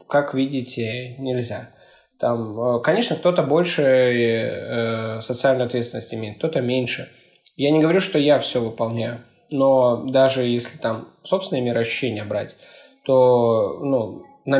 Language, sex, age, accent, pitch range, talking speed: Russian, male, 20-39, native, 120-145 Hz, 120 wpm